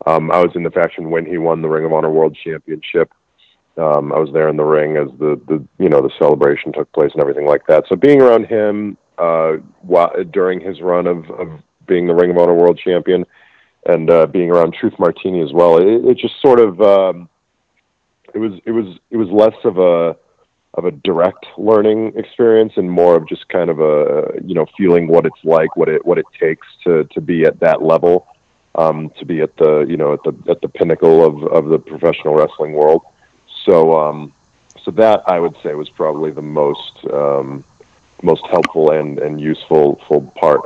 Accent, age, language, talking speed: American, 40-59, English, 210 wpm